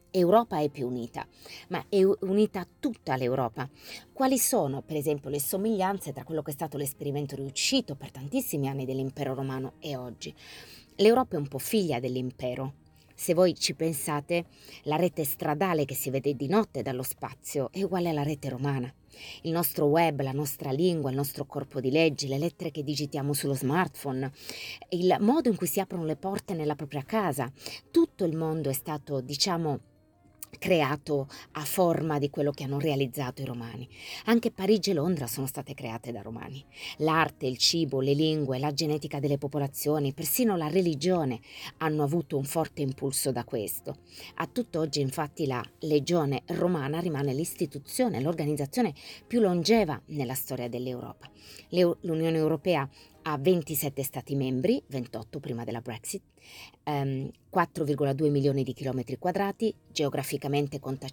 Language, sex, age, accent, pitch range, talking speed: Italian, female, 30-49, native, 135-170 Hz, 155 wpm